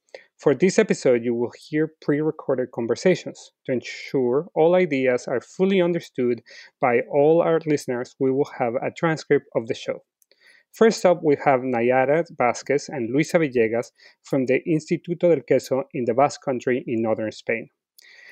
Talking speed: 155 wpm